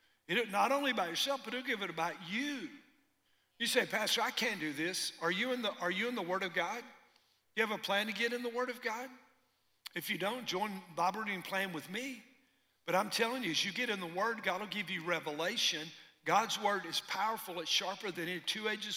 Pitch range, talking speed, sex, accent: 165-215 Hz, 220 wpm, male, American